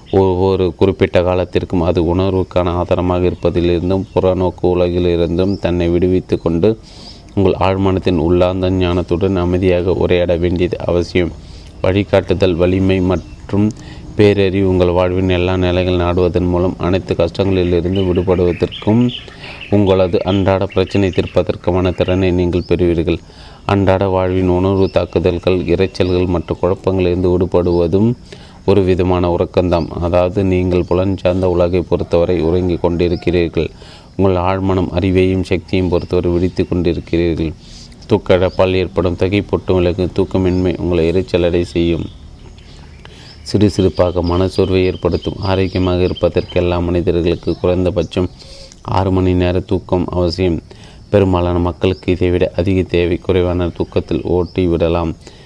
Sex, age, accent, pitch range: male, 30-49, native, 85-95 Hz